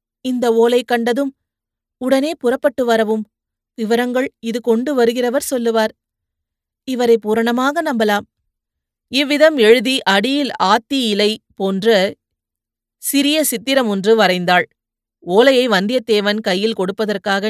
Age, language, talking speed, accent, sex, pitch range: 30-49, Tamil, 95 wpm, native, female, 205-255 Hz